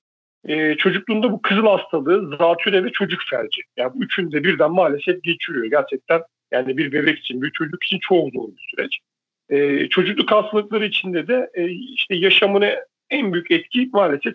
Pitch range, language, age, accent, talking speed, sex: 160-210 Hz, Turkish, 50-69, native, 165 wpm, male